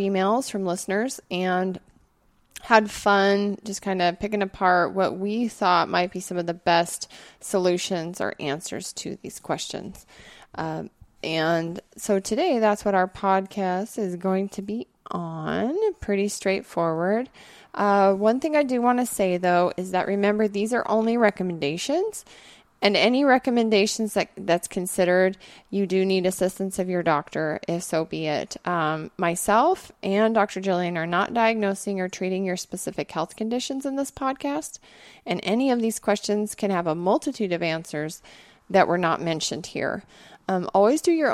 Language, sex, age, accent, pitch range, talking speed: English, female, 20-39, American, 180-225 Hz, 160 wpm